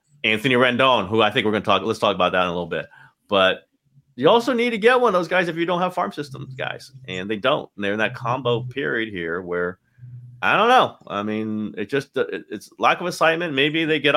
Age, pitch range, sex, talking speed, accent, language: 30-49, 105-145 Hz, male, 250 wpm, American, English